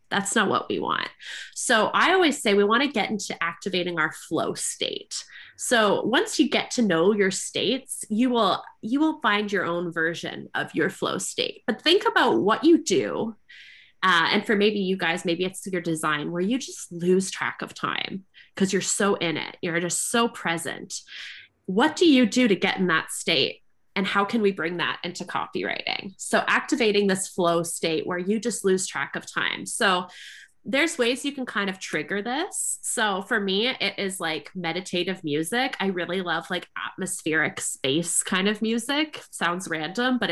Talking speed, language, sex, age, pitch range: 190 wpm, English, female, 20-39, 175-245 Hz